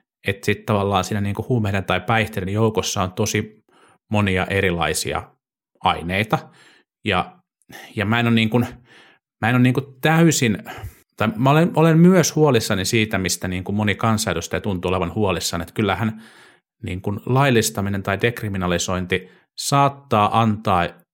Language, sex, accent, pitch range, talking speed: Finnish, male, native, 95-120 Hz, 130 wpm